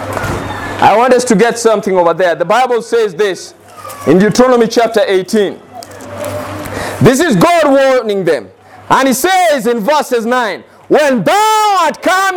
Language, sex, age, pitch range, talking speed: English, male, 50-69, 225-310 Hz, 150 wpm